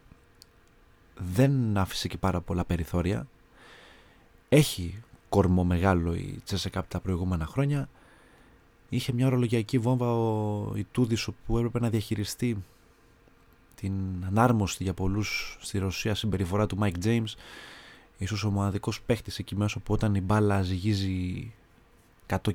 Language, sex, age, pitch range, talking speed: Greek, male, 30-49, 90-115 Hz, 120 wpm